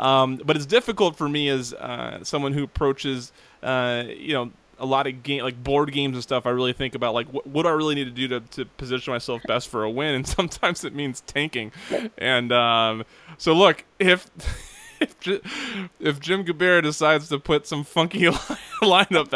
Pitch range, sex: 115-145 Hz, male